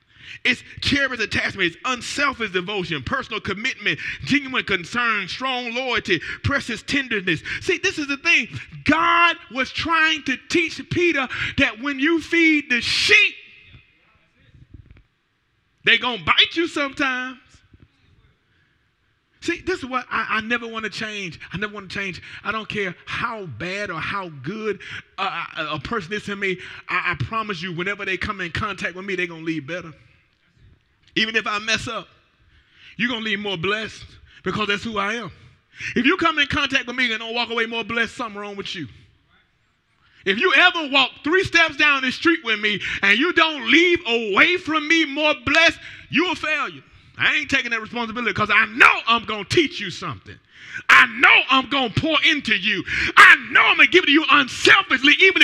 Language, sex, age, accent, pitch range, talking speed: English, male, 30-49, American, 205-315 Hz, 185 wpm